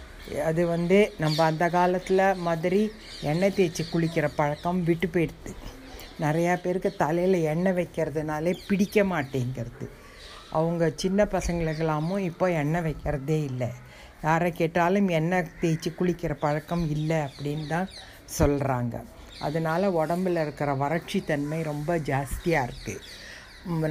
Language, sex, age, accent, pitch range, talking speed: Tamil, female, 60-79, native, 150-180 Hz, 105 wpm